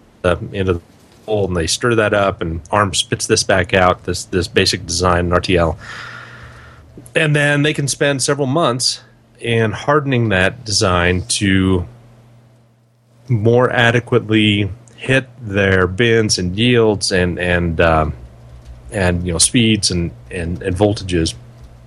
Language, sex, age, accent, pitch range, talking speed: English, male, 30-49, American, 95-120 Hz, 135 wpm